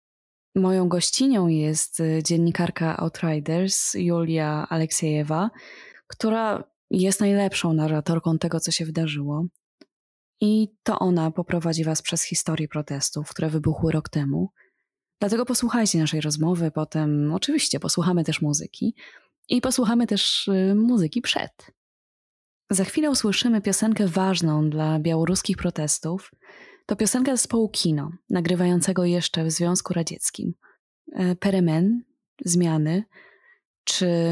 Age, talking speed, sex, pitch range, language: 20-39, 105 wpm, female, 160-205 Hz, Polish